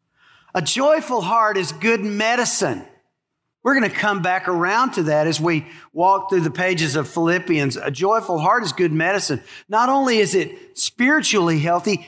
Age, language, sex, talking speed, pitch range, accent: 50-69, English, male, 170 wpm, 175-240 Hz, American